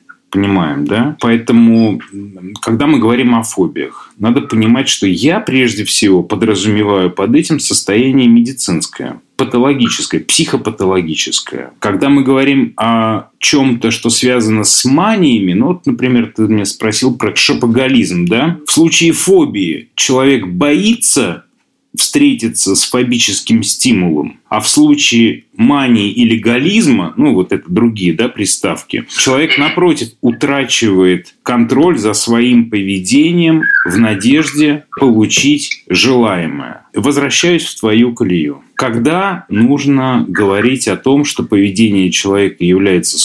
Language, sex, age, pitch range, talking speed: Russian, male, 30-49, 110-155 Hz, 115 wpm